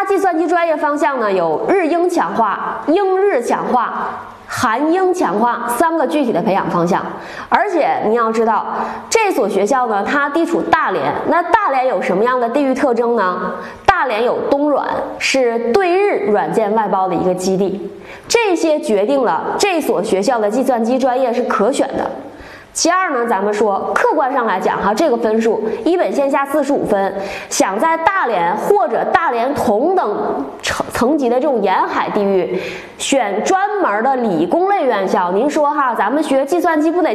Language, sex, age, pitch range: Chinese, female, 20-39, 235-355 Hz